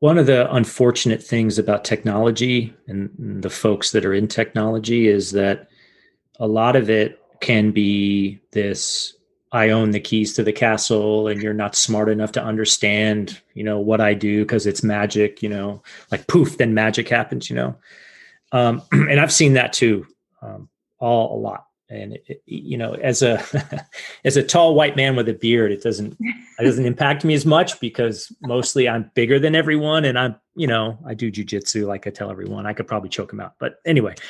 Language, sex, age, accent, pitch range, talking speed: English, male, 30-49, American, 105-130 Hz, 190 wpm